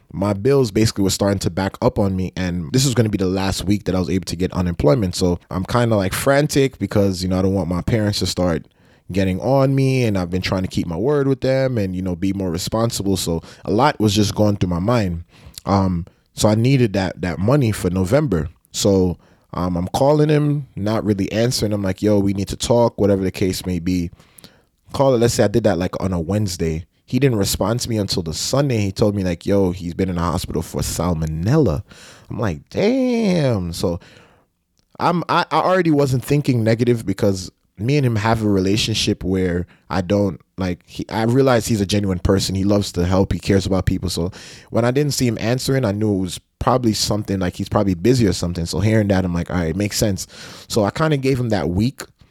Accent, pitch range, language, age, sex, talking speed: American, 90-120 Hz, English, 20-39, male, 235 wpm